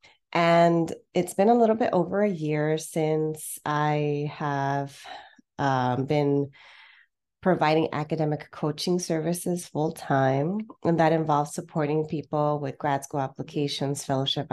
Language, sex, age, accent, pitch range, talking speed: English, female, 30-49, American, 140-185 Hz, 120 wpm